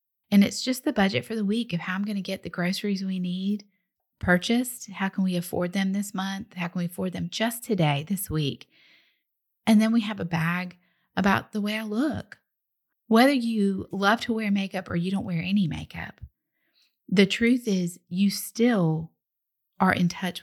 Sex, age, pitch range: female, 30-49, 175-225 Hz